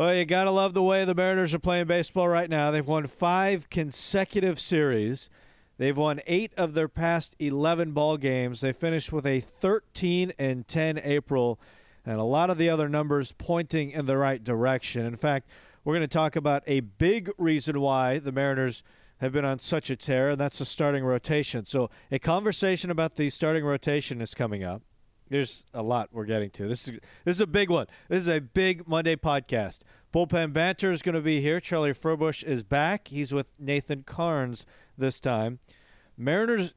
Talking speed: 195 wpm